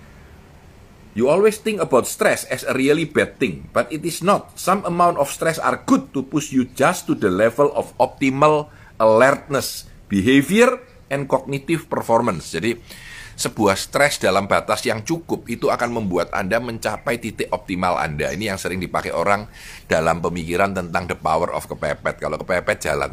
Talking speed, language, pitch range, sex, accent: 165 wpm, Indonesian, 90-145 Hz, male, native